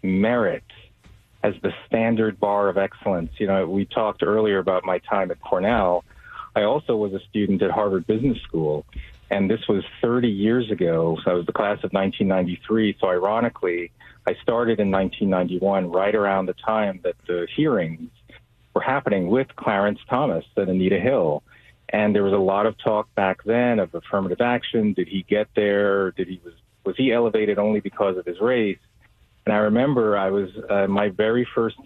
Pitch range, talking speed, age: 95-110 Hz, 180 wpm, 40-59